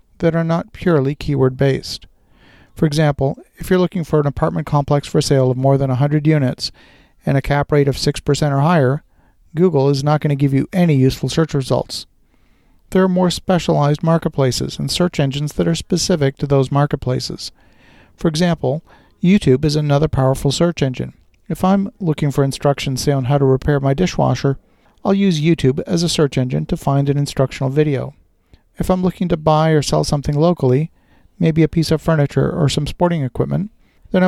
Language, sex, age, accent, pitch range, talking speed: English, male, 50-69, American, 135-165 Hz, 185 wpm